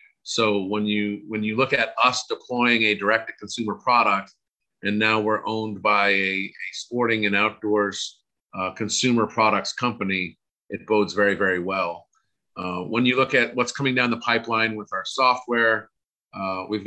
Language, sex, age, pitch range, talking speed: English, male, 40-59, 95-115 Hz, 165 wpm